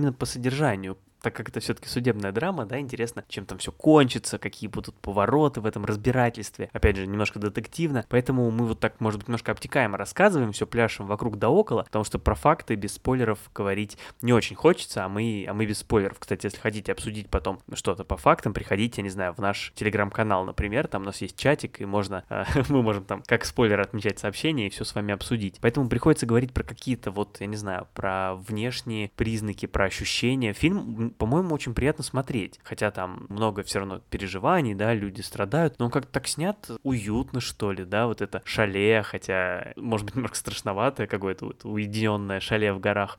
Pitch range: 100-120 Hz